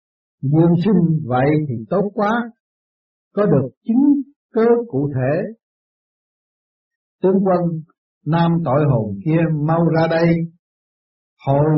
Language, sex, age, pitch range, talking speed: Vietnamese, male, 60-79, 130-180 Hz, 110 wpm